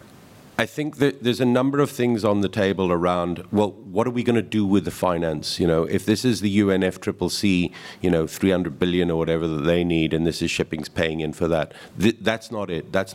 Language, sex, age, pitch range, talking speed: English, male, 50-69, 80-95 Hz, 235 wpm